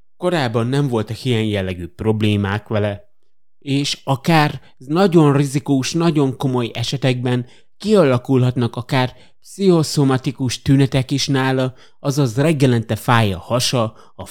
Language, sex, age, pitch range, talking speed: Hungarian, male, 30-49, 115-160 Hz, 110 wpm